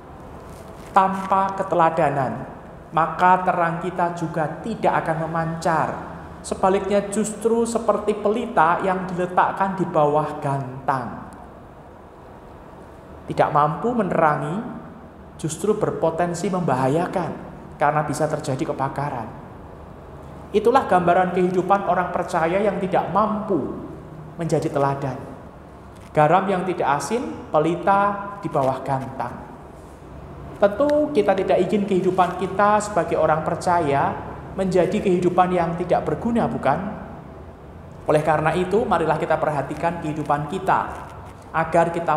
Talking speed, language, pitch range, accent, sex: 100 wpm, Indonesian, 145-190 Hz, native, male